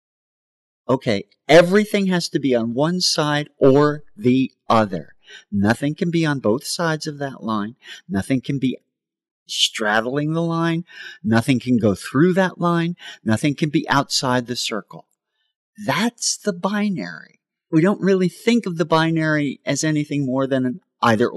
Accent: American